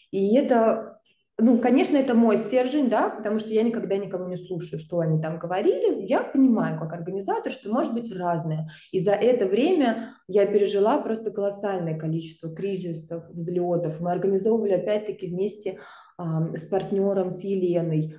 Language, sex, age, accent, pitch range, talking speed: Russian, female, 20-39, native, 175-215 Hz, 150 wpm